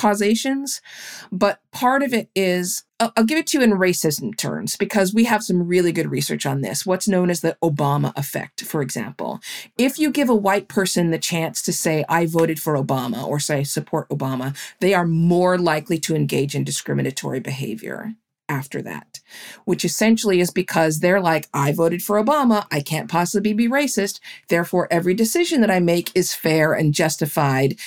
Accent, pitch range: American, 165-225 Hz